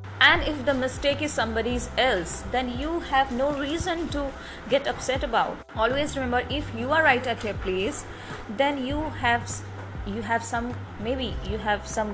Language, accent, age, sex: English, Indian, 20-39, female